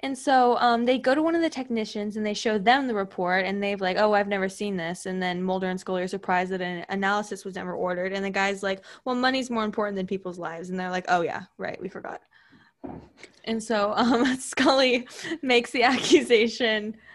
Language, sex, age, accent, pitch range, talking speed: English, female, 10-29, American, 185-220 Hz, 220 wpm